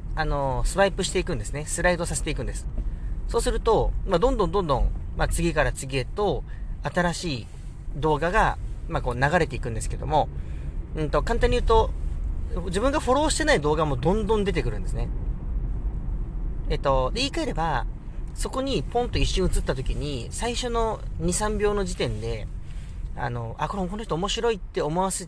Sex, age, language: male, 40-59, Japanese